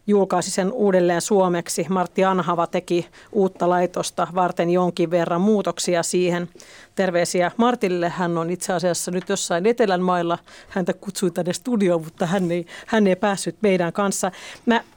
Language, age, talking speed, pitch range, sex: Finnish, 40-59, 150 wpm, 175-205 Hz, female